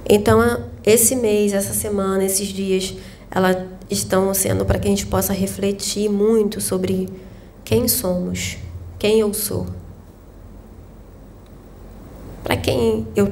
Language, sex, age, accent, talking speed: Portuguese, female, 20-39, Brazilian, 115 wpm